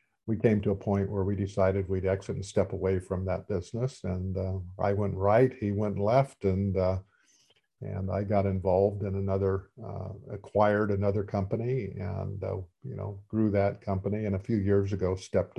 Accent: American